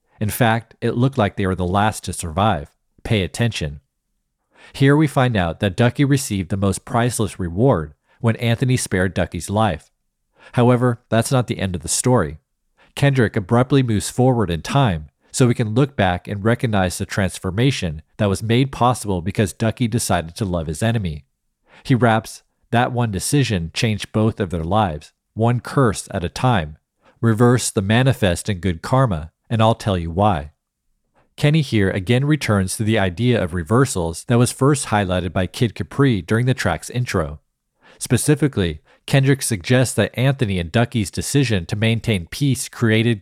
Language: English